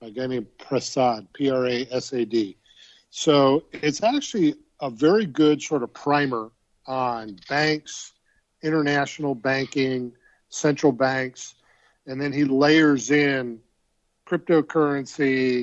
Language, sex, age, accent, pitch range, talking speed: English, male, 50-69, American, 125-150 Hz, 100 wpm